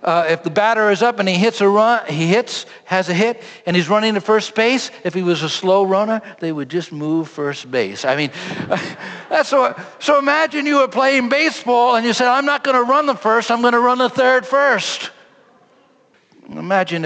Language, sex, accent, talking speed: English, male, American, 220 wpm